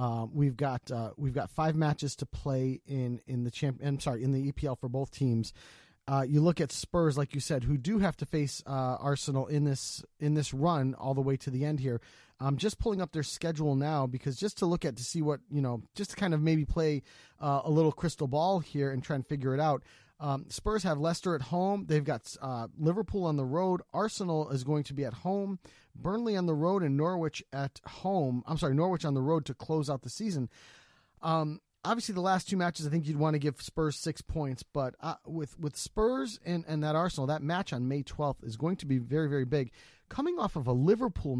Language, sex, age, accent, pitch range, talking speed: English, male, 30-49, American, 135-170 Hz, 240 wpm